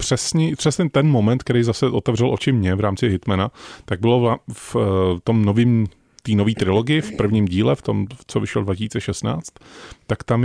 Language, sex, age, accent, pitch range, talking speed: Czech, male, 30-49, native, 100-125 Hz, 160 wpm